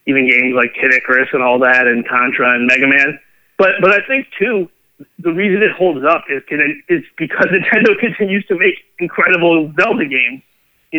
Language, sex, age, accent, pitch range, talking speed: English, male, 30-49, American, 135-185 Hz, 185 wpm